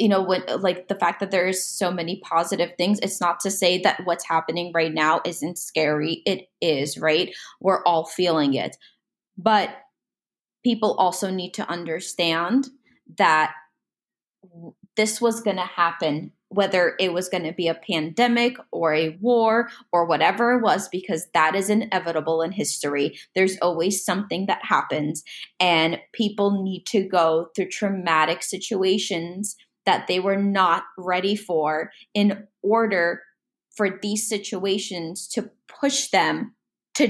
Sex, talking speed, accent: female, 145 wpm, American